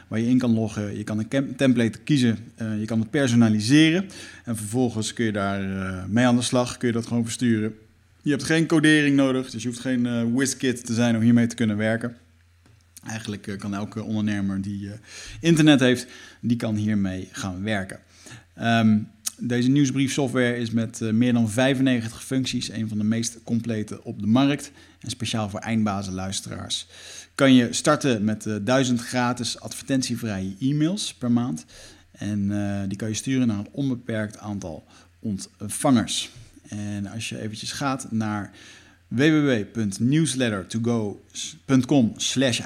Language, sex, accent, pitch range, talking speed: Dutch, male, Dutch, 105-125 Hz, 160 wpm